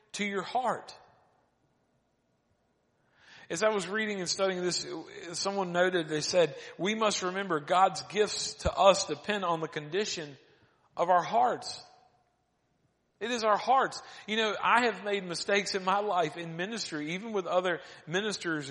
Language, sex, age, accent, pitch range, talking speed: English, male, 40-59, American, 140-190 Hz, 150 wpm